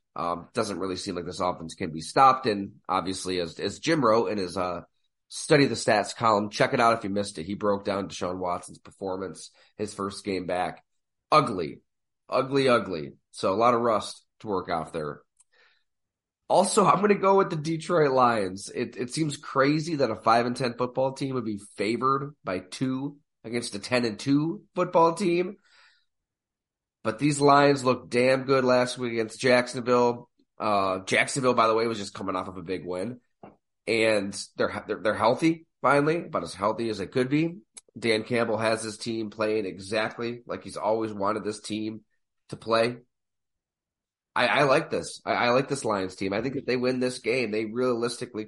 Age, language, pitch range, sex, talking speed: 30-49, English, 105-135 Hz, male, 190 wpm